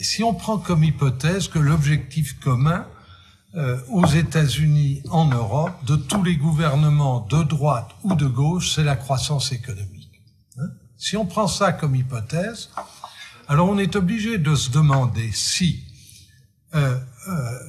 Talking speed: 145 wpm